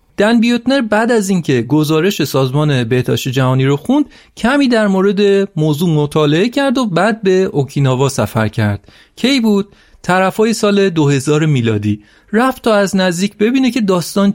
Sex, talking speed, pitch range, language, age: male, 155 wpm, 145-210 Hz, Persian, 40-59